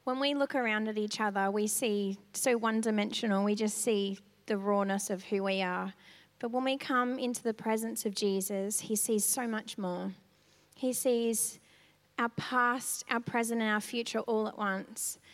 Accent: Australian